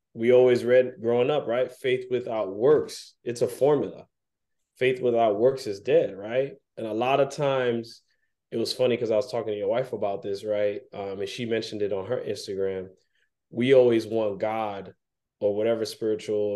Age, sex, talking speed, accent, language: 20-39, male, 185 wpm, American, English